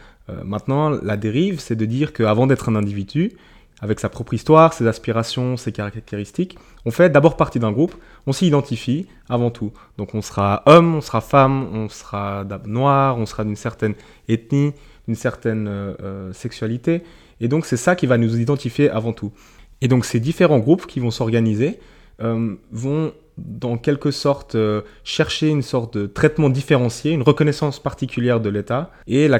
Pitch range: 110-145 Hz